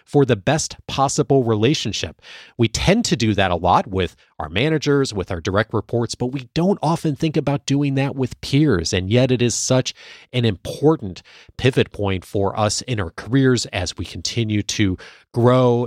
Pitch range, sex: 100-145 Hz, male